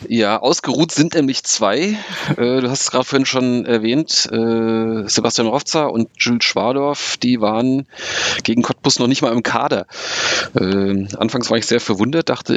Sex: male